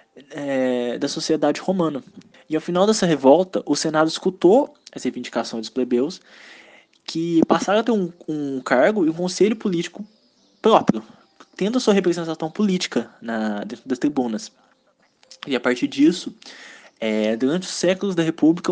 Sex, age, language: male, 20-39, Portuguese